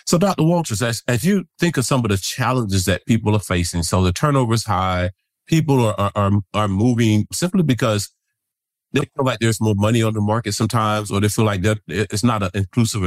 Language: English